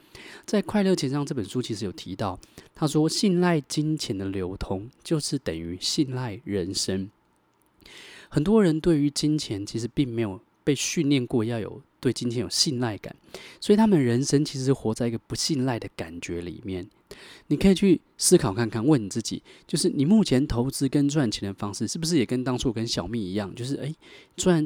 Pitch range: 105-150 Hz